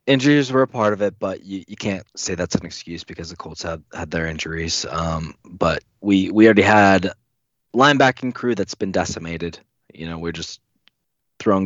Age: 20-39